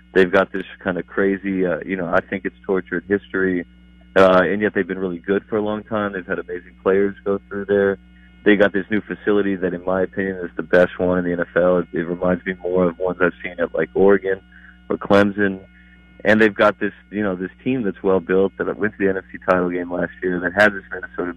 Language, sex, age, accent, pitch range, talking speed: English, male, 30-49, American, 90-105 Hz, 240 wpm